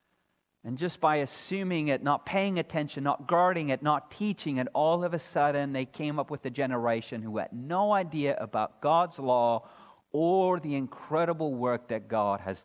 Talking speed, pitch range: 180 wpm, 140-195 Hz